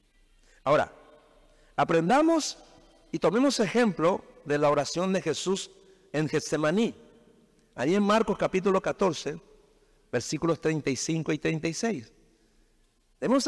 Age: 60-79